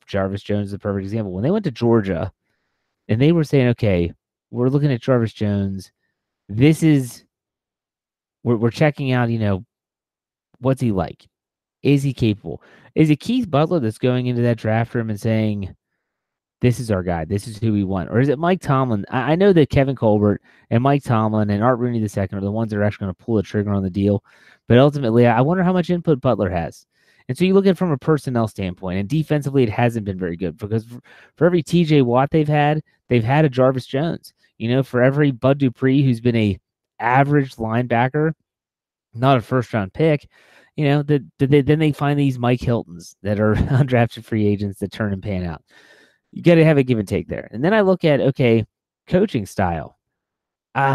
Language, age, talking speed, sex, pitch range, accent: English, 30-49, 215 wpm, male, 105-145 Hz, American